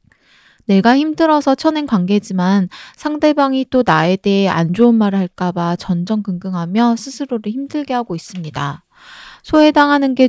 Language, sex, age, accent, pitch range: Korean, female, 20-39, native, 185-265 Hz